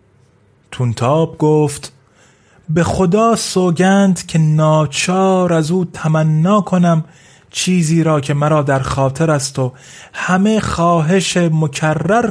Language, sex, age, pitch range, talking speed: Persian, male, 30-49, 130-170 Hz, 105 wpm